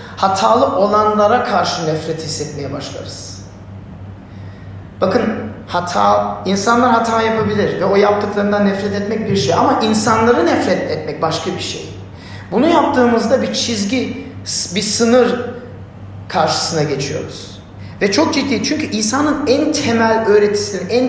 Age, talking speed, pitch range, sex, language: 40-59, 120 wpm, 150-235 Hz, male, Turkish